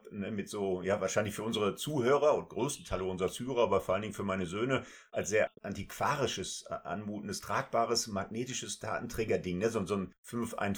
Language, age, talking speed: German, 50-69, 165 wpm